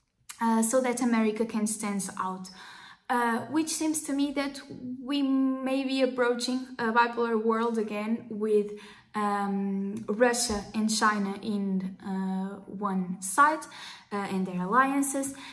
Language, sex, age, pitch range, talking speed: English, female, 10-29, 205-245 Hz, 130 wpm